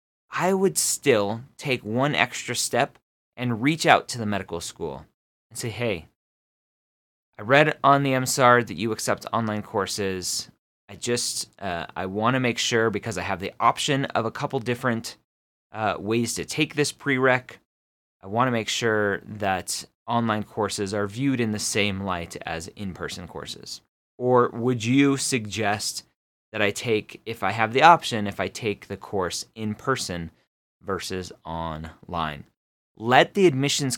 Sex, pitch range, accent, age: male, 100-130 Hz, American, 30-49